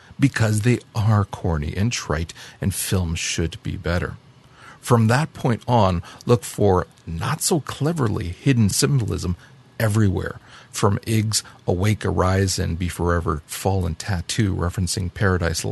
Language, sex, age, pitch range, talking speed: English, male, 40-59, 95-120 Hz, 130 wpm